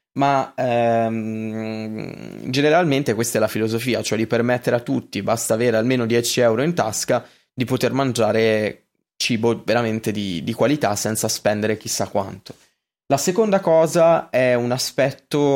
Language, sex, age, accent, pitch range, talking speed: Italian, male, 20-39, native, 110-125 Hz, 145 wpm